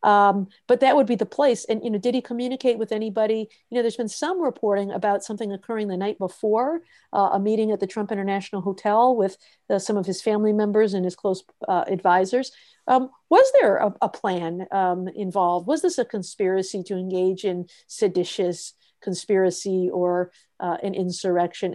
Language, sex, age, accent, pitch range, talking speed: English, female, 50-69, American, 185-215 Hz, 190 wpm